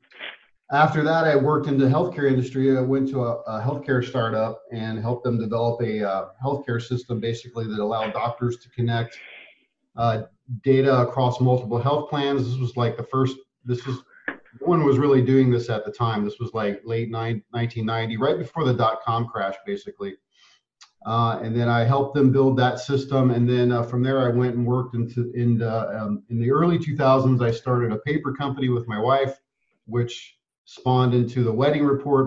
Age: 40-59